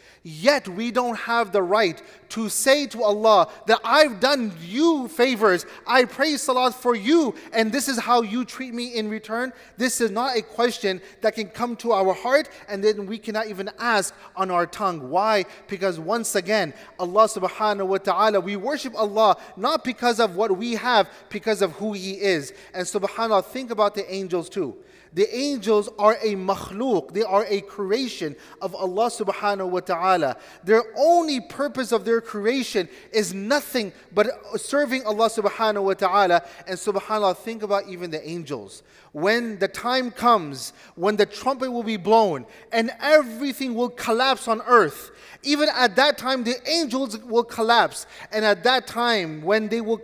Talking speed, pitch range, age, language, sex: 175 wpm, 200-245 Hz, 30-49, English, male